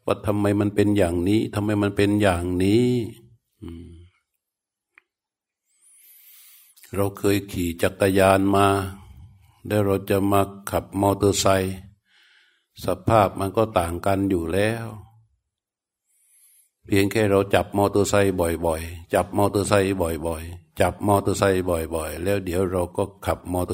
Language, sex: Thai, male